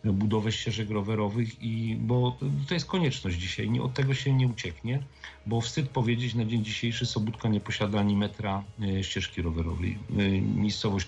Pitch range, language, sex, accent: 95-125 Hz, Polish, male, native